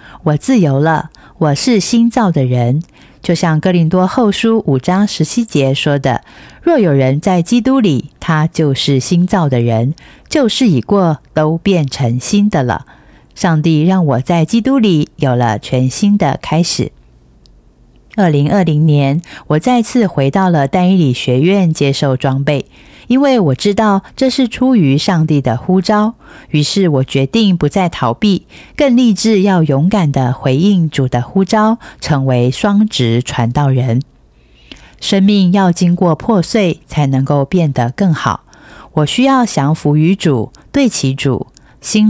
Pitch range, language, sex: 135-195 Hz, Chinese, female